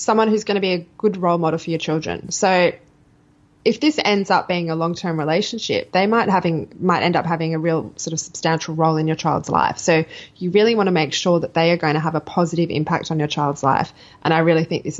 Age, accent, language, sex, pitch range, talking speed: 20-39, Australian, English, female, 160-190 Hz, 250 wpm